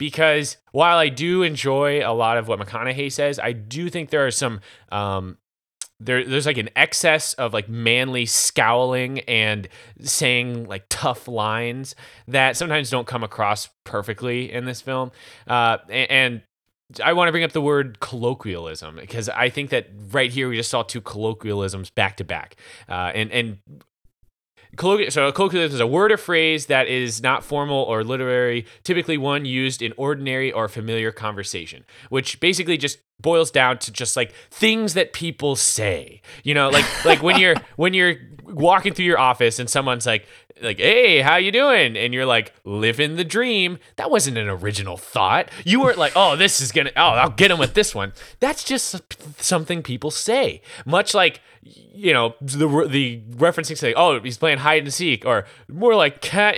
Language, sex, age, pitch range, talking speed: English, male, 20-39, 115-165 Hz, 180 wpm